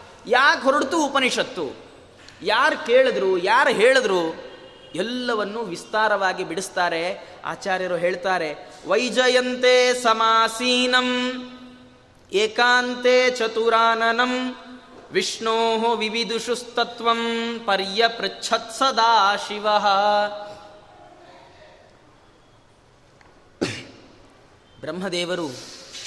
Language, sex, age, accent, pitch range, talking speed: Kannada, male, 20-39, native, 195-235 Hz, 40 wpm